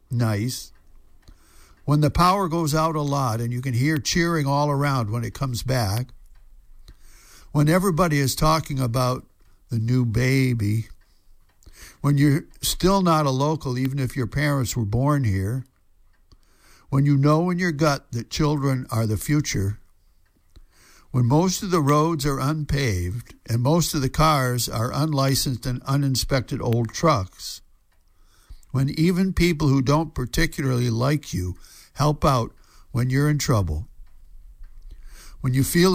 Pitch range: 105-150 Hz